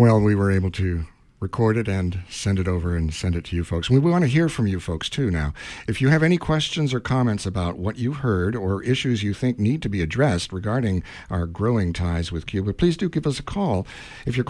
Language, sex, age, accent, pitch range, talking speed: English, male, 60-79, American, 90-125 Hz, 245 wpm